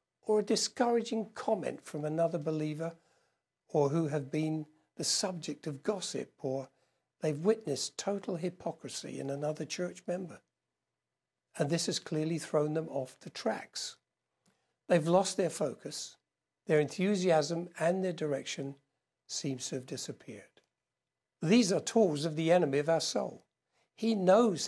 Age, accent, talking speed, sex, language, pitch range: 60-79, British, 140 wpm, male, English, 145-190 Hz